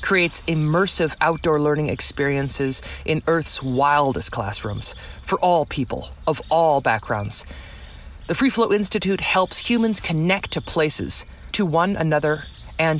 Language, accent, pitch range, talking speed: English, American, 120-170 Hz, 130 wpm